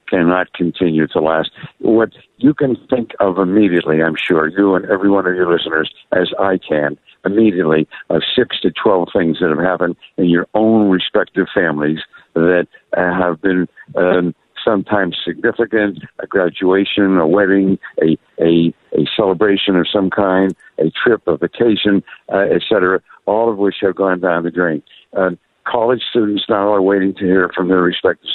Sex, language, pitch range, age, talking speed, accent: male, English, 80-100 Hz, 60-79, 165 wpm, American